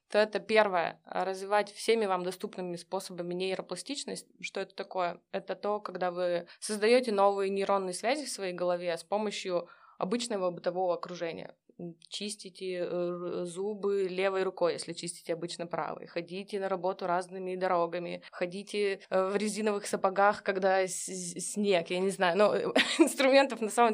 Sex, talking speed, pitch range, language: female, 140 wpm, 180-210 Hz, Russian